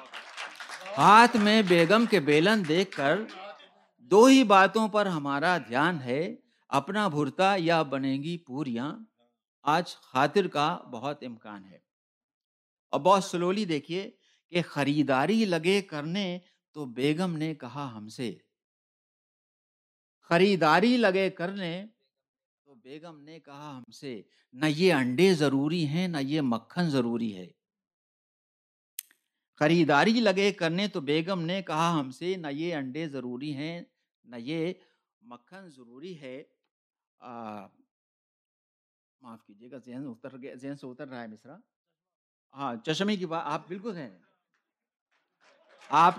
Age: 50-69